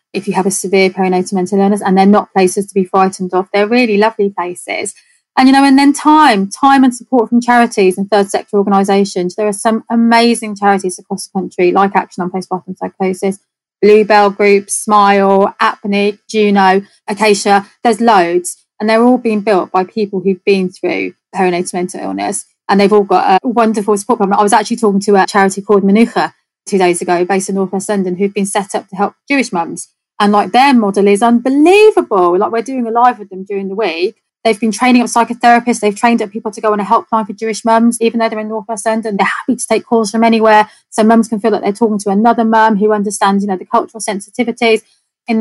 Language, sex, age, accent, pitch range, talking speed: English, female, 20-39, British, 195-225 Hz, 220 wpm